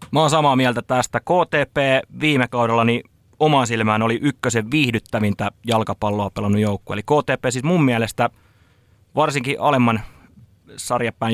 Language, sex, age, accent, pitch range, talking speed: Finnish, male, 30-49, native, 105-130 Hz, 130 wpm